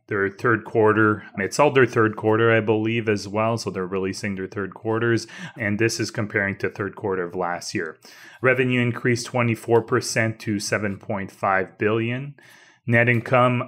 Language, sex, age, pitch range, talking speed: English, male, 30-49, 100-120 Hz, 160 wpm